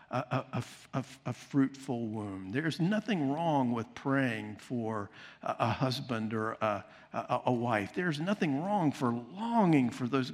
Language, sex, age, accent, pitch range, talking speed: English, male, 50-69, American, 110-140 Hz, 145 wpm